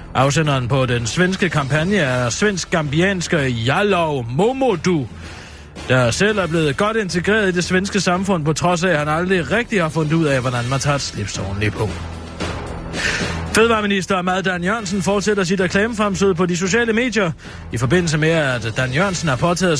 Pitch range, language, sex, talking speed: 135-195 Hz, Danish, male, 165 wpm